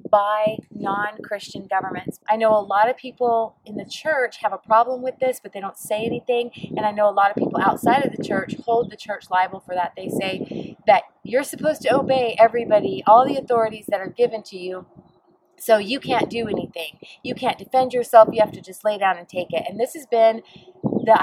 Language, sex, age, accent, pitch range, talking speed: English, female, 30-49, American, 195-255 Hz, 220 wpm